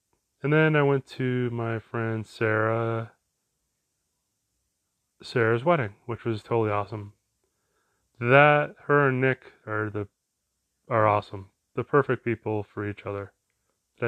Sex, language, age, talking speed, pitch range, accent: male, English, 30-49, 125 wpm, 105-140 Hz, American